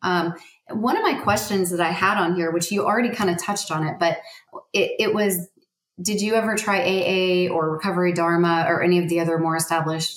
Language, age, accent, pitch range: English, 30-49, American, 160-190 Hz